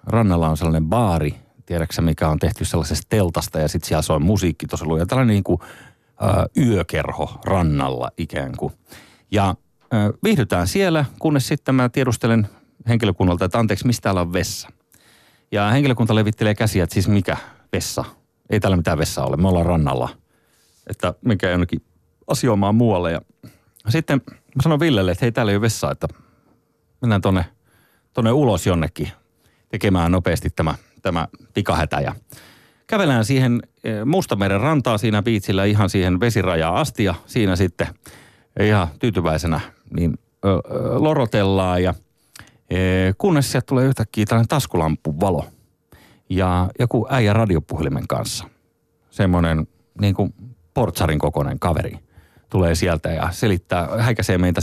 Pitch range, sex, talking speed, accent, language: 85-115 Hz, male, 135 wpm, native, Finnish